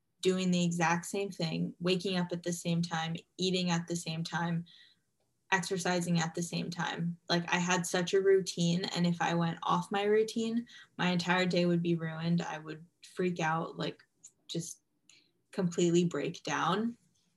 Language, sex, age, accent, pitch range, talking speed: English, female, 10-29, American, 170-180 Hz, 170 wpm